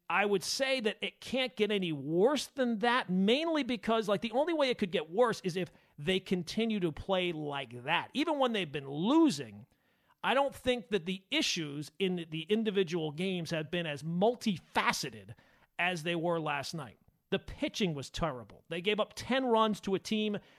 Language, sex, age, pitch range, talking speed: English, male, 40-59, 170-235 Hz, 190 wpm